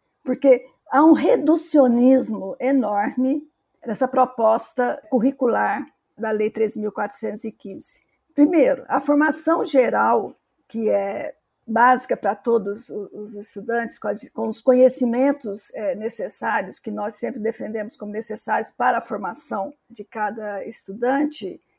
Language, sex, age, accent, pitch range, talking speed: Portuguese, female, 50-69, Brazilian, 225-275 Hz, 105 wpm